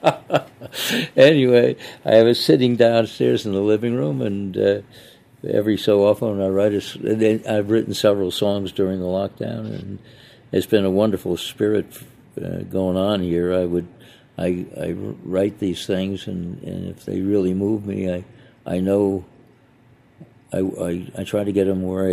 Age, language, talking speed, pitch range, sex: 60-79, English, 160 wpm, 95-115 Hz, male